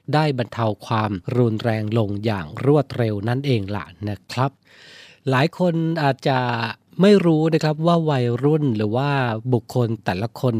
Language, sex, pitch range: Thai, male, 115-145 Hz